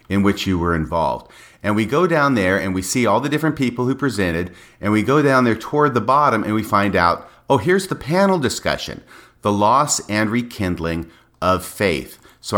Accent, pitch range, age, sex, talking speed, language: American, 95-125 Hz, 40-59, male, 205 wpm, English